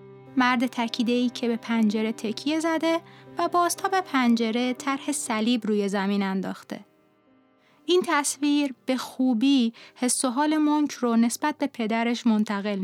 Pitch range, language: 215-290 Hz, Persian